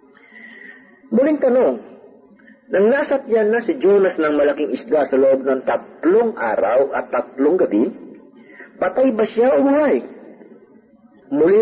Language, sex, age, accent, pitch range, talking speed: Filipino, male, 40-59, native, 165-265 Hz, 125 wpm